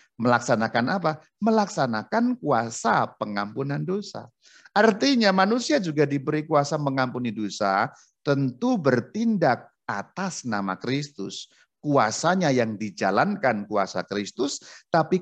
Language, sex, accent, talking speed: Indonesian, male, native, 95 wpm